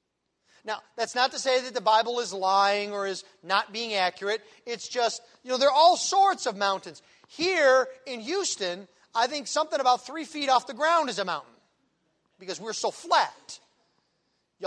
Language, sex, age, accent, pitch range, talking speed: English, male, 40-59, American, 220-315 Hz, 185 wpm